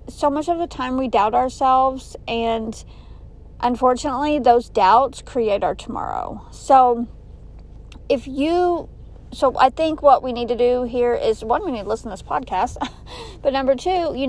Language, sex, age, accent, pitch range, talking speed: English, female, 40-59, American, 220-255 Hz, 170 wpm